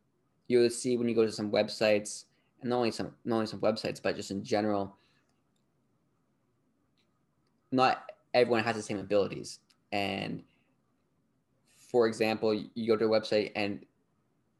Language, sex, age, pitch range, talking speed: English, male, 20-39, 105-120 Hz, 150 wpm